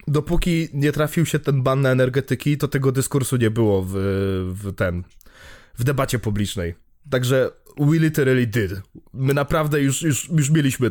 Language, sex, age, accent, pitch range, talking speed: Polish, male, 20-39, native, 120-160 Hz, 160 wpm